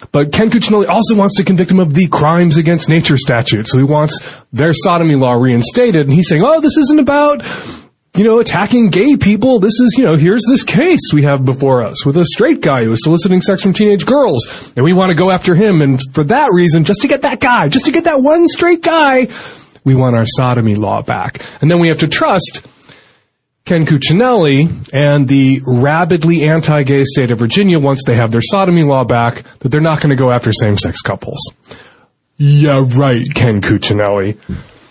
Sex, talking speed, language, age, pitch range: male, 205 wpm, English, 30-49, 140-230 Hz